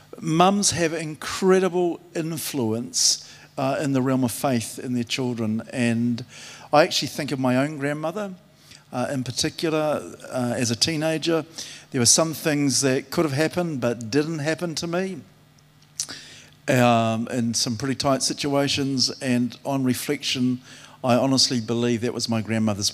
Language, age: English, 50-69